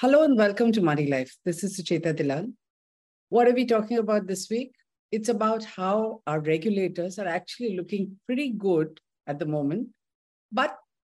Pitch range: 170-225 Hz